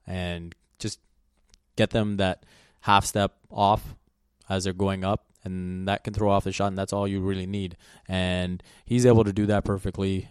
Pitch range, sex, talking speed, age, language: 90-100 Hz, male, 185 wpm, 20-39, English